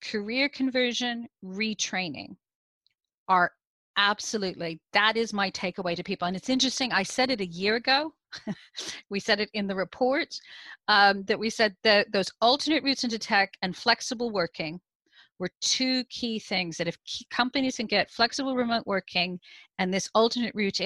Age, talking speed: 40-59, 160 wpm